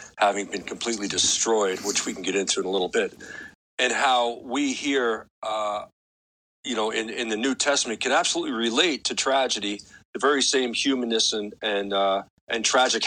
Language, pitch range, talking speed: English, 105-130 Hz, 180 wpm